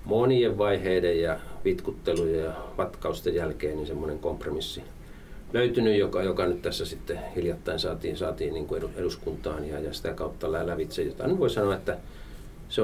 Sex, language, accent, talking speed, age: male, Finnish, native, 150 wpm, 40-59